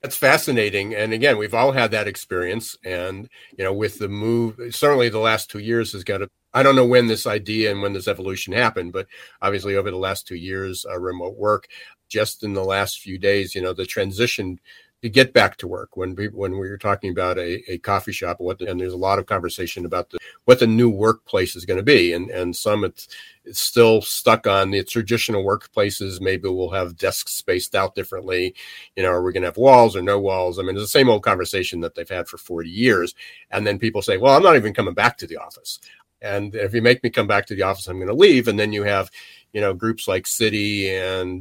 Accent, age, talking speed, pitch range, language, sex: American, 50-69, 240 wpm, 95-115 Hz, English, male